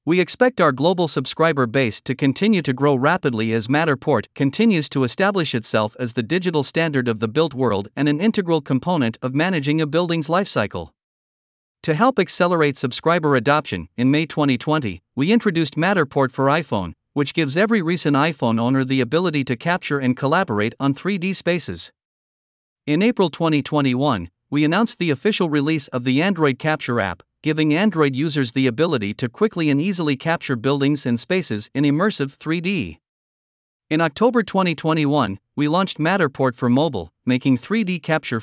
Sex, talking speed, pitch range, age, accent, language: male, 160 wpm, 130-165 Hz, 50-69, American, English